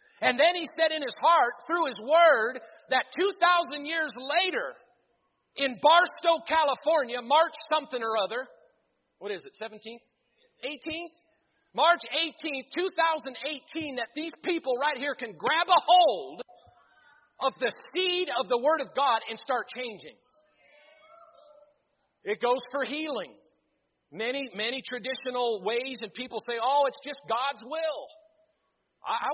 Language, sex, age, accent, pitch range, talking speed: English, male, 40-59, American, 245-320 Hz, 135 wpm